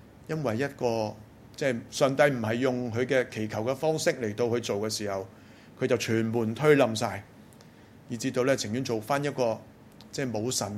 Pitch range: 110-140 Hz